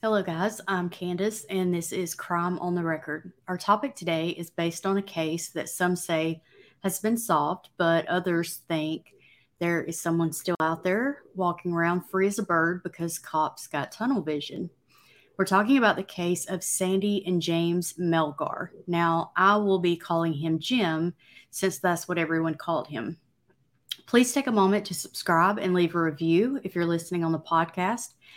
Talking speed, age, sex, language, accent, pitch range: 180 wpm, 30-49, female, English, American, 165-195 Hz